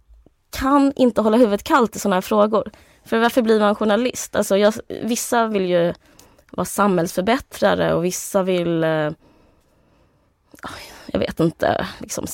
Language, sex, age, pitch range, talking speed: Swedish, female, 20-39, 175-235 Hz, 135 wpm